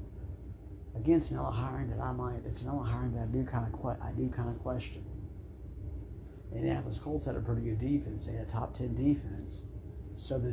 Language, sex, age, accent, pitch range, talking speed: English, male, 50-69, American, 95-115 Hz, 210 wpm